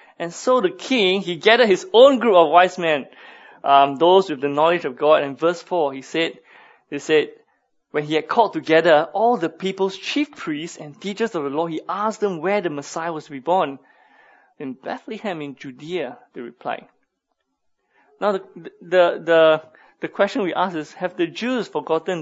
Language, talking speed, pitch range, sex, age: English, 190 wpm, 150-210 Hz, male, 20-39